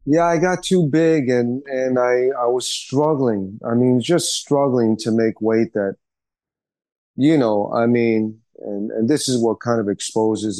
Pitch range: 100-120 Hz